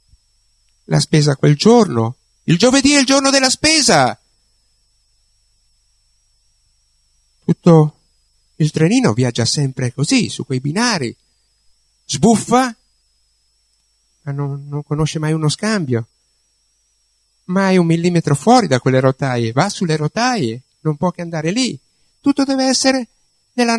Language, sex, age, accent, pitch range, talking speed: Italian, male, 60-79, native, 95-160 Hz, 120 wpm